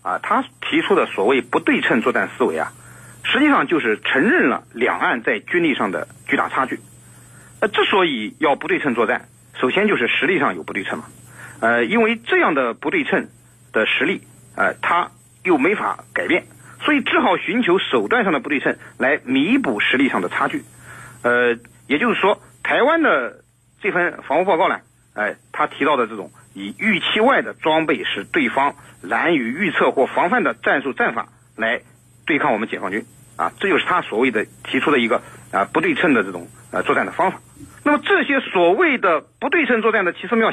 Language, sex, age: Chinese, male, 50-69